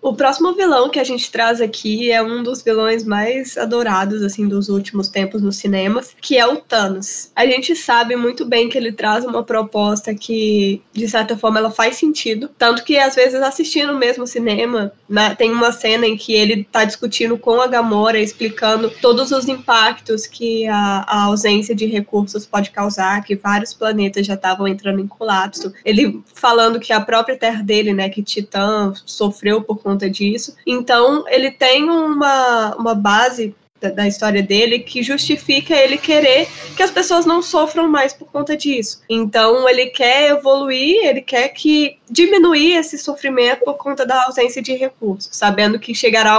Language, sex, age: Portuguese, female, 10-29